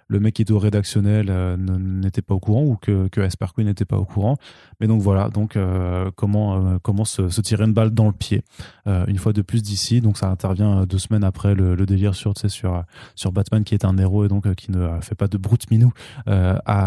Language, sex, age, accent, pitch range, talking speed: French, male, 20-39, French, 100-115 Hz, 255 wpm